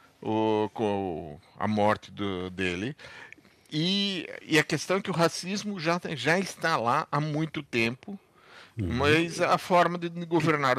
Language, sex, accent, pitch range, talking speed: Portuguese, male, Brazilian, 120-165 Hz, 150 wpm